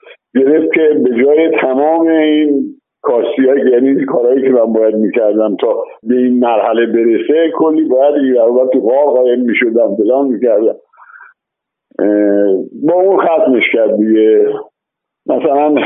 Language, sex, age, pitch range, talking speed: Persian, male, 60-79, 120-180 Hz, 130 wpm